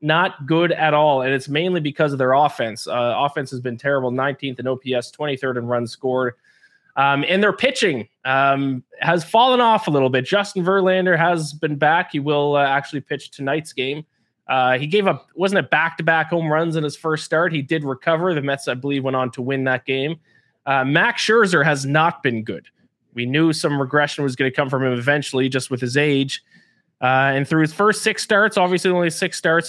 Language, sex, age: English, male, 20-39